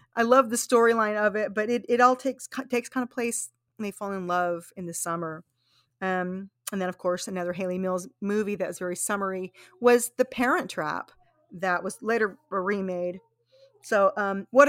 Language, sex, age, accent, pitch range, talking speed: English, female, 40-59, American, 180-235 Hz, 190 wpm